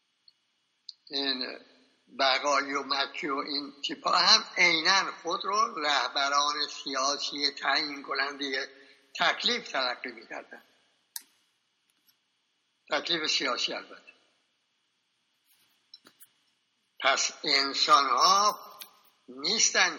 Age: 60-79